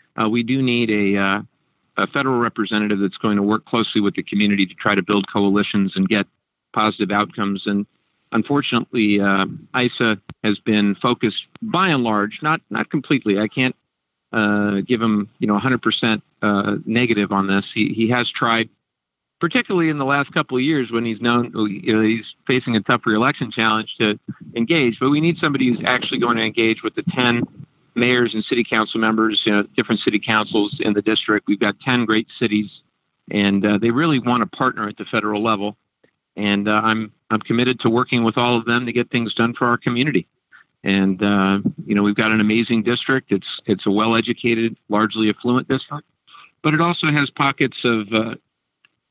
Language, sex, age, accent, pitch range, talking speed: English, male, 50-69, American, 105-125 Hz, 195 wpm